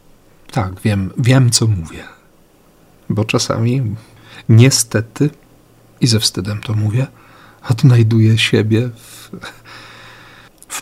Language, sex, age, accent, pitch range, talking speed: Polish, male, 50-69, native, 105-120 Hz, 95 wpm